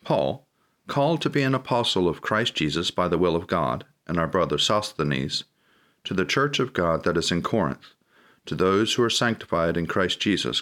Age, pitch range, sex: 40-59, 80-105 Hz, male